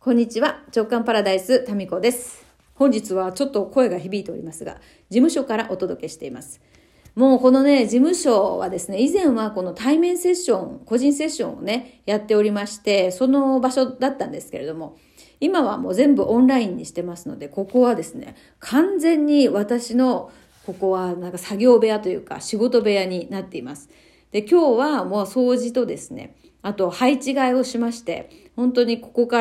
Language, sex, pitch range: Japanese, female, 200-265 Hz